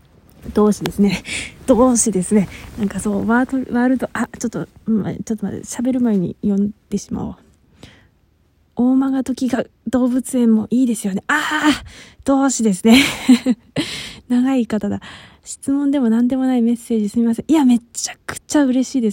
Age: 20-39